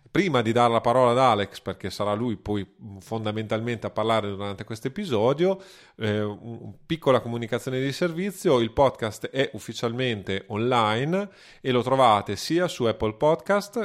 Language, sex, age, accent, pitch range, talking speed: Italian, male, 30-49, native, 110-140 Hz, 150 wpm